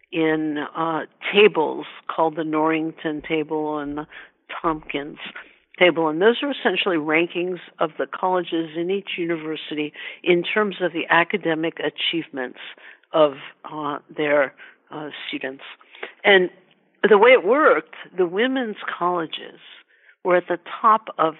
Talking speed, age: 130 wpm, 60-79